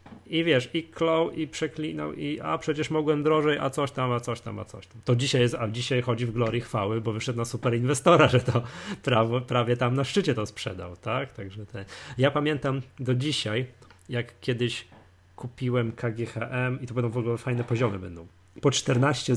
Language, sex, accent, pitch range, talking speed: Polish, male, native, 115-145 Hz, 195 wpm